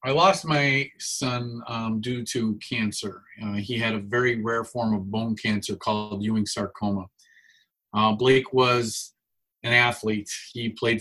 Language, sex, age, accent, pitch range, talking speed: English, male, 30-49, American, 110-130 Hz, 155 wpm